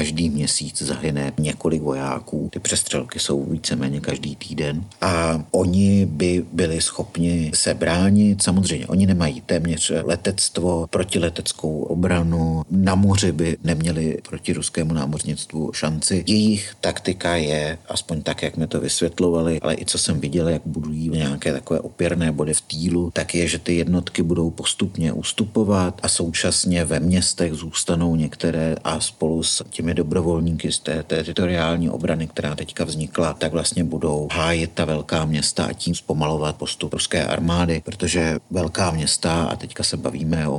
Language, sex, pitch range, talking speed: Czech, male, 75-90 Hz, 150 wpm